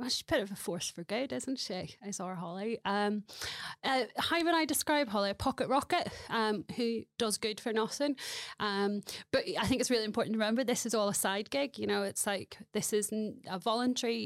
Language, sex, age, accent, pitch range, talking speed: English, female, 30-49, British, 195-230 Hz, 220 wpm